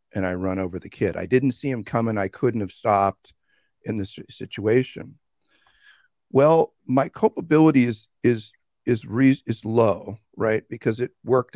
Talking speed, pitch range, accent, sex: 155 wpm, 95-130 Hz, American, male